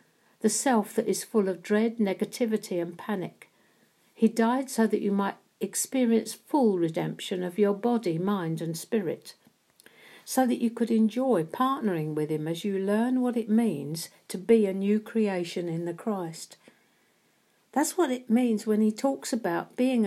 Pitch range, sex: 185-235 Hz, female